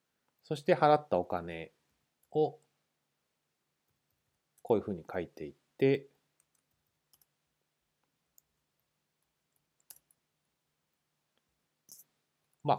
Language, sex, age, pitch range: Japanese, male, 40-59, 100-155 Hz